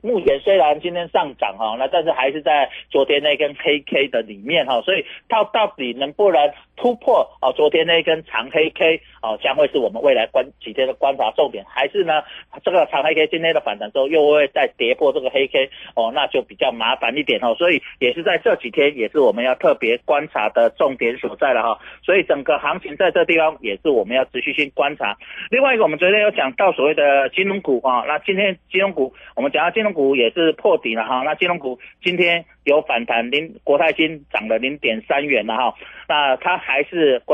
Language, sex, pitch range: Chinese, male, 145-210 Hz